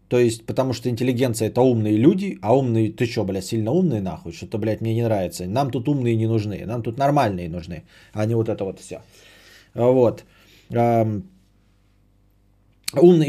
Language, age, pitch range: Bulgarian, 20-39, 110-165 Hz